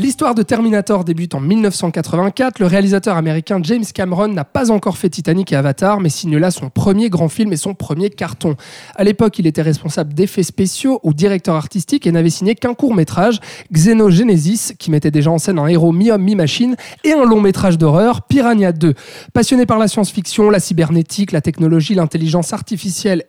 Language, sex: French, male